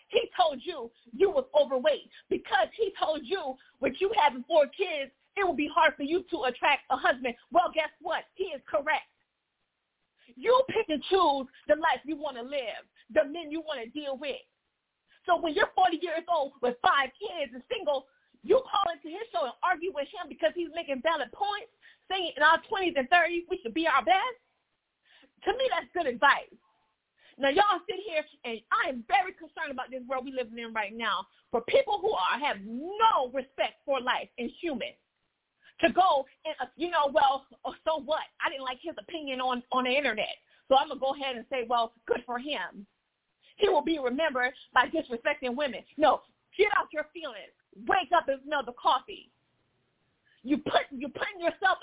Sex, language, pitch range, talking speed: female, English, 270-355 Hz, 195 wpm